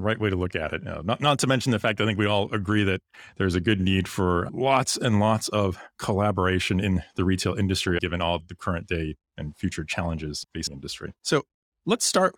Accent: American